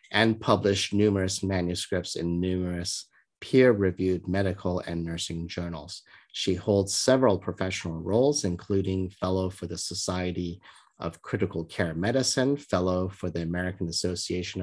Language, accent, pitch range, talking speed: English, American, 90-110 Hz, 125 wpm